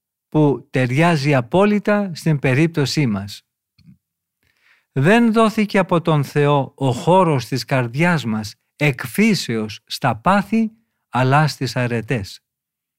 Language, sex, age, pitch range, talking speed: Greek, male, 50-69, 130-180 Hz, 100 wpm